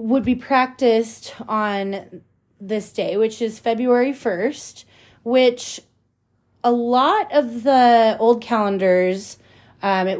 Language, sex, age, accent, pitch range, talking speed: English, female, 30-49, American, 180-230 Hz, 110 wpm